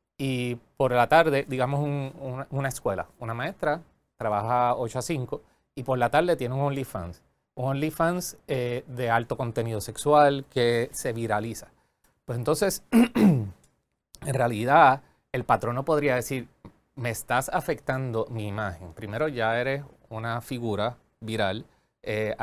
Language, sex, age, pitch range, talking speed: Spanish, male, 30-49, 110-140 Hz, 140 wpm